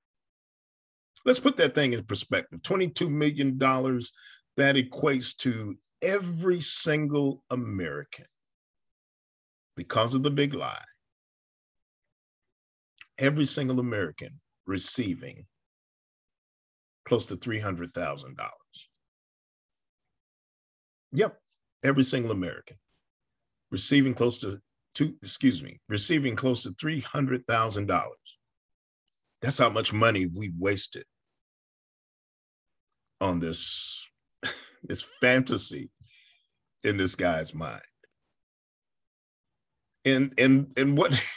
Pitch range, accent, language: 90-135 Hz, American, English